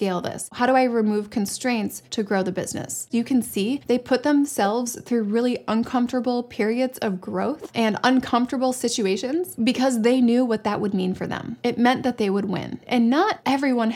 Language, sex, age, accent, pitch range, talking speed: English, female, 20-39, American, 210-250 Hz, 185 wpm